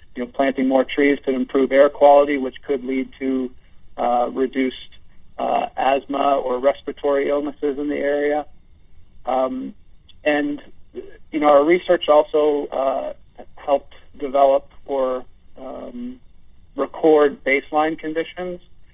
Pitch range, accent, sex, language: 130-145 Hz, American, male, English